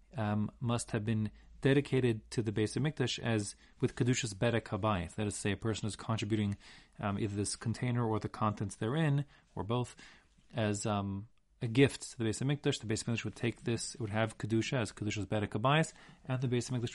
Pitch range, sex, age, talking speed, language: 110-145 Hz, male, 30-49, 210 wpm, English